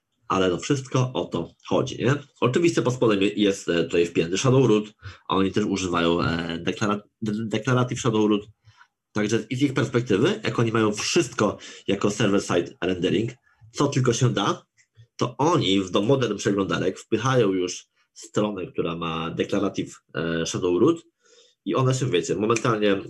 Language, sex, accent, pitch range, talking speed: Polish, male, native, 95-125 Hz, 150 wpm